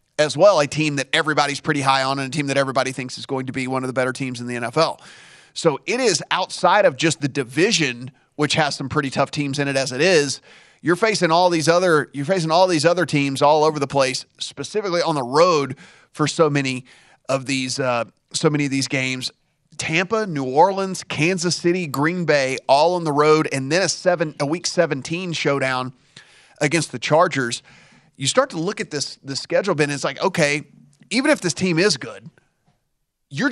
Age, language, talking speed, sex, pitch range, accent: 30-49, English, 210 wpm, male, 140-175 Hz, American